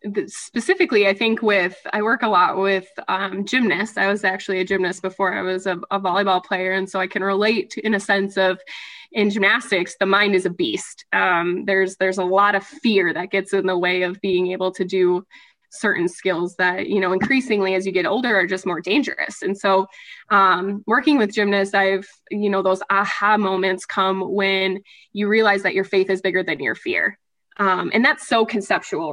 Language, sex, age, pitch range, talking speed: English, female, 20-39, 185-210 Hz, 205 wpm